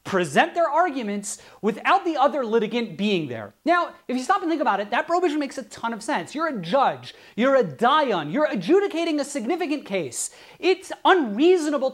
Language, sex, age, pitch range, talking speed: English, male, 30-49, 230-315 Hz, 185 wpm